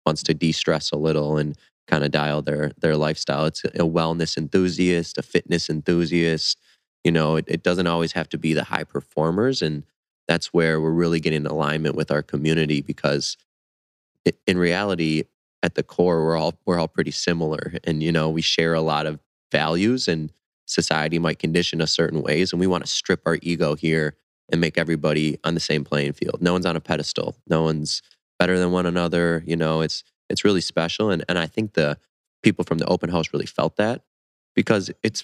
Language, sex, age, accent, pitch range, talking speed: English, male, 20-39, American, 75-85 Hz, 200 wpm